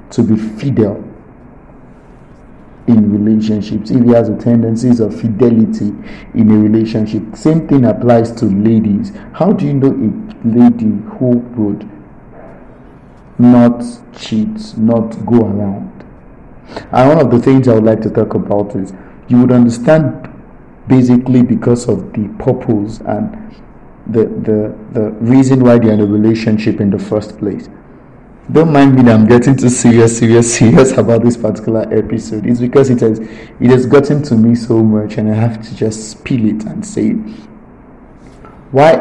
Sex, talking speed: male, 155 wpm